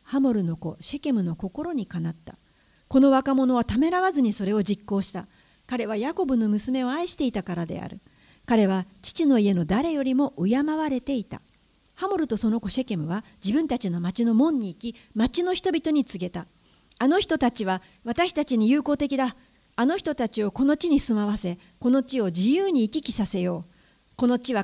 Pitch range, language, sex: 200-290 Hz, Japanese, female